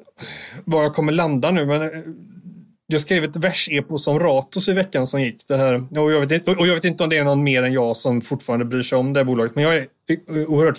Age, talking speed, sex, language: 30-49, 245 wpm, male, Swedish